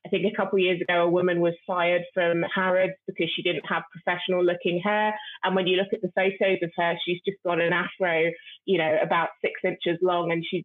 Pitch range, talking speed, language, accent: 170-200 Hz, 235 wpm, English, British